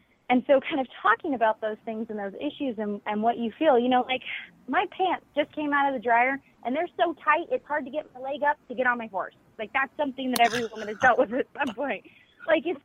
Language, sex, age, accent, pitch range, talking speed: English, female, 30-49, American, 205-255 Hz, 265 wpm